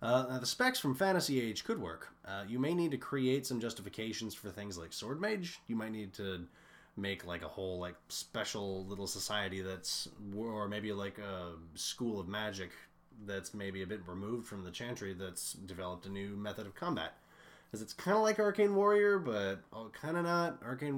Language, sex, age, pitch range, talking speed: English, male, 20-39, 95-135 Hz, 195 wpm